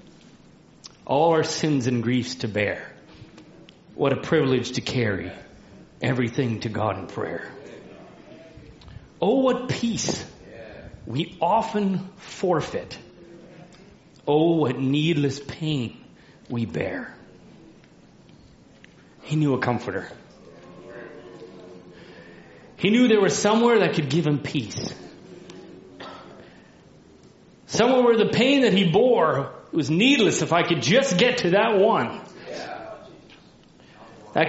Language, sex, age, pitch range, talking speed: English, male, 40-59, 115-190 Hz, 110 wpm